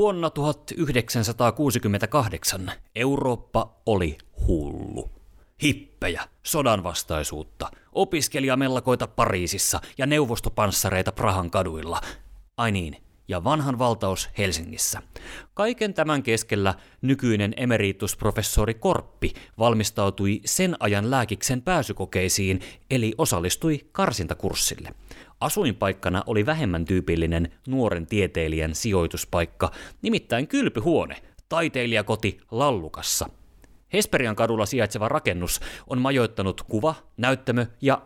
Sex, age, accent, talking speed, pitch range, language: male, 30-49, native, 85 wpm, 95-130 Hz, Finnish